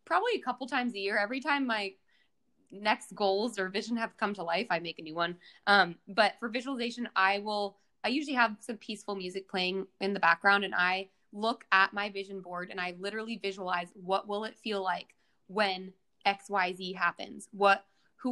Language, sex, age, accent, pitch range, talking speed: English, female, 20-39, American, 190-225 Hz, 200 wpm